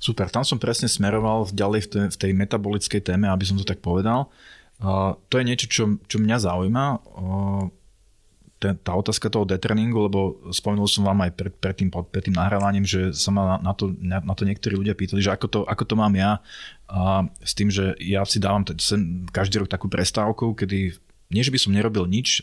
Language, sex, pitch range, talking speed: Slovak, male, 95-105 Hz, 210 wpm